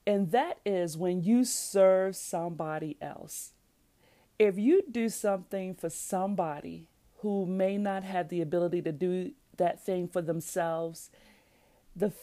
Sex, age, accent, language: female, 40-59, American, English